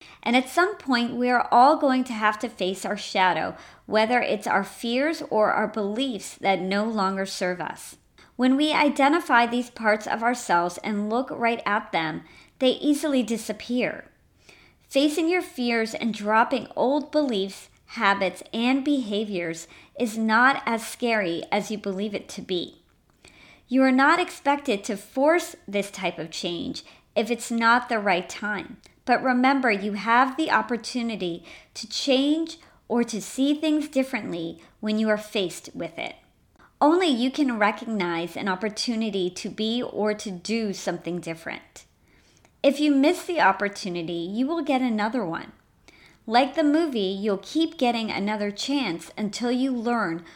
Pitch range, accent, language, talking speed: 200-265 Hz, American, English, 155 wpm